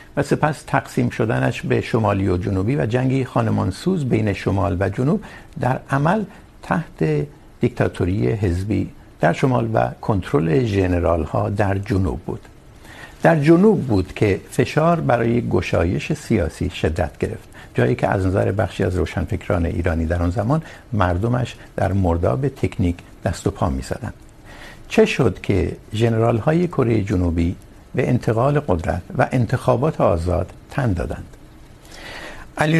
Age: 60-79